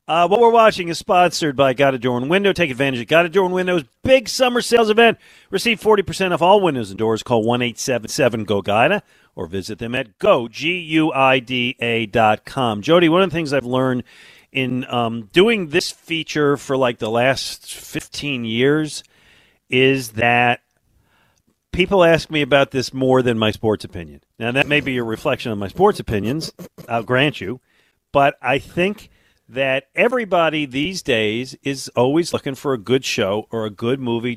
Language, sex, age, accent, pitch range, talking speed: English, male, 40-59, American, 120-160 Hz, 180 wpm